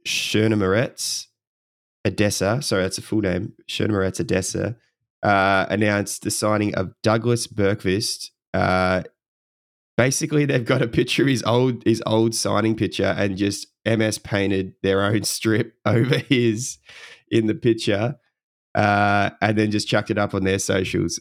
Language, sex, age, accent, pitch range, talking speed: English, male, 20-39, Australian, 95-115 Hz, 140 wpm